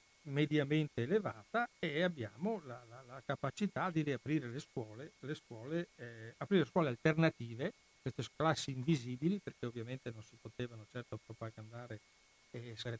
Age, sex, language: 60-79, male, Italian